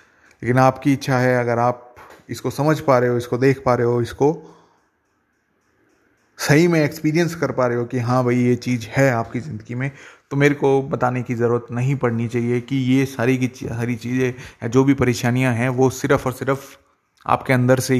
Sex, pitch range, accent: male, 120-135 Hz, native